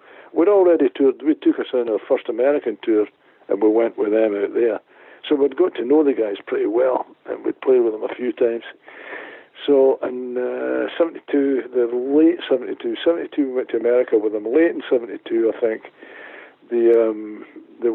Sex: male